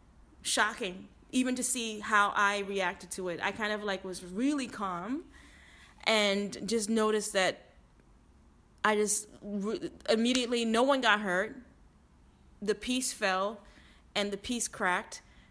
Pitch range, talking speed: 190-225 Hz, 135 wpm